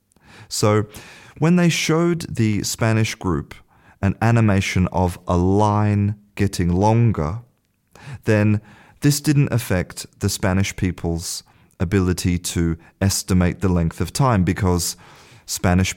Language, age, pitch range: English, 30-49, 90-110 Hz